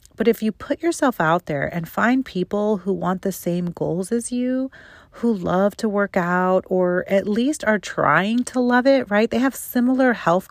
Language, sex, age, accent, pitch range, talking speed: English, female, 40-59, American, 170-220 Hz, 200 wpm